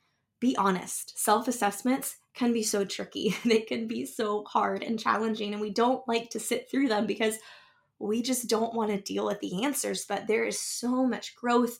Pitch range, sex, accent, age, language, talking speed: 195-235 Hz, female, American, 20-39, English, 200 wpm